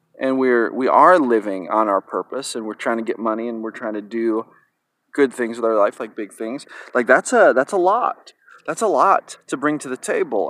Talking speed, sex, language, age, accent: 235 wpm, male, English, 30-49, American